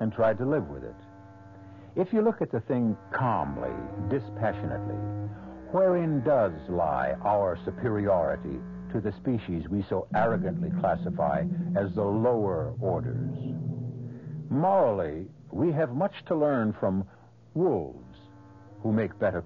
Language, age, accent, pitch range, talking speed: English, 60-79, American, 95-140 Hz, 125 wpm